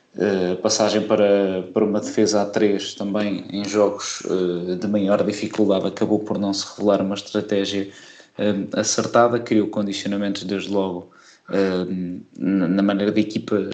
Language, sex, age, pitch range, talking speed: Portuguese, male, 20-39, 95-105 Hz, 155 wpm